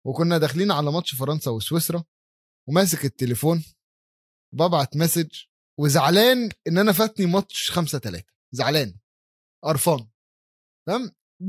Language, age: Arabic, 20-39